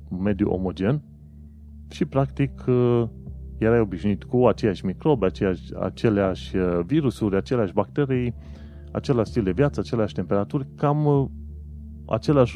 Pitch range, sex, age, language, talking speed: 90-125 Hz, male, 30-49, Romanian, 105 wpm